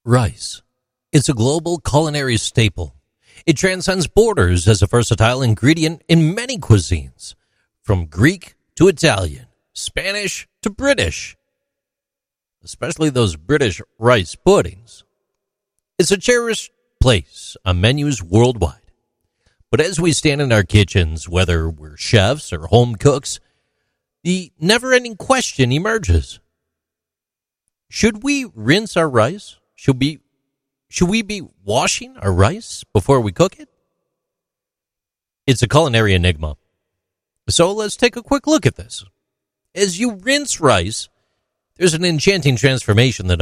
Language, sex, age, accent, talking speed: English, male, 40-59, American, 125 wpm